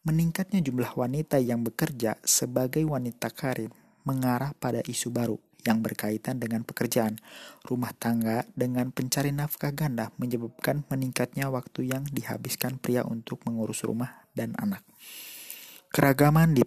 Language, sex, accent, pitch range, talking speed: Indonesian, male, native, 115-135 Hz, 125 wpm